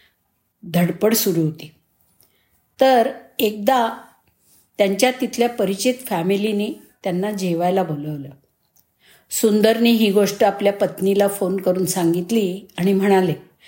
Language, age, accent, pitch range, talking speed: Marathi, 50-69, native, 180-230 Hz, 95 wpm